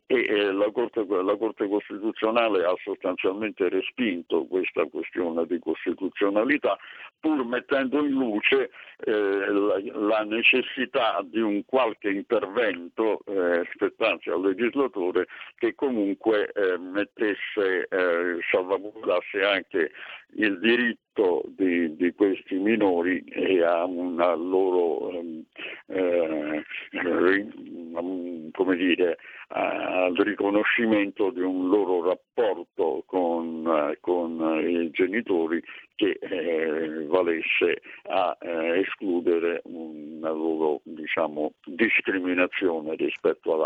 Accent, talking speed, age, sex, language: native, 100 wpm, 60-79, male, Italian